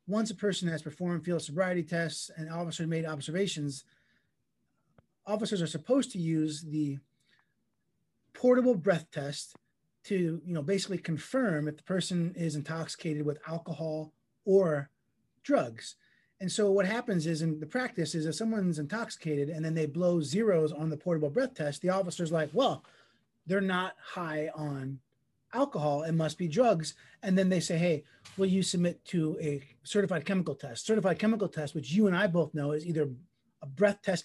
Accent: American